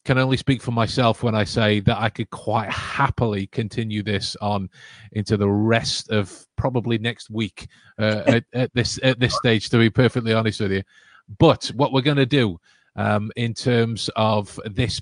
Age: 30-49